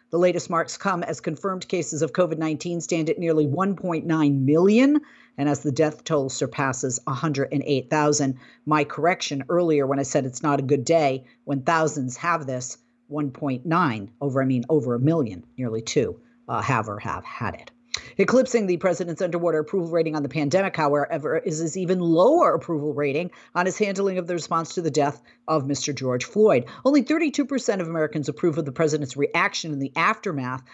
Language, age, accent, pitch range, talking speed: English, 50-69, American, 145-175 Hz, 180 wpm